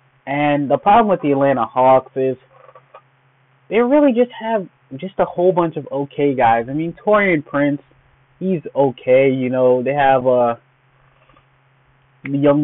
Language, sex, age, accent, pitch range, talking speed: English, male, 20-39, American, 125-145 Hz, 145 wpm